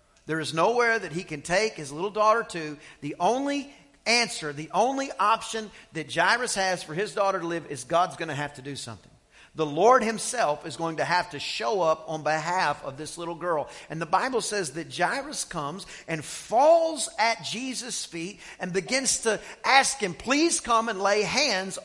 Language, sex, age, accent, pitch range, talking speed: English, male, 40-59, American, 170-260 Hz, 195 wpm